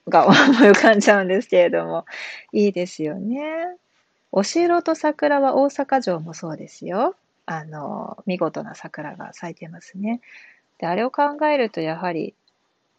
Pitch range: 175-230 Hz